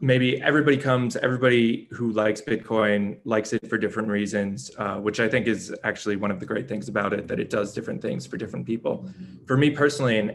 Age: 20-39